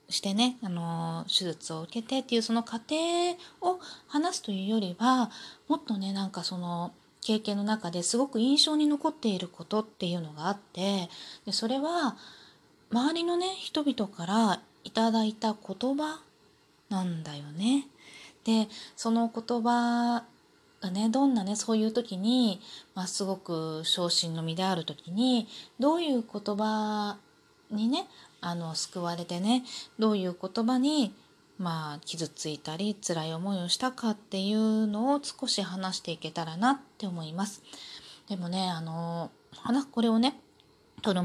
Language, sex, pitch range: Japanese, female, 180-240 Hz